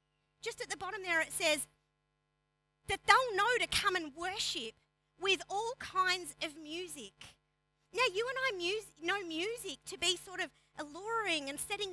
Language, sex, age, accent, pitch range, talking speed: English, female, 40-59, Australian, 300-410 Hz, 165 wpm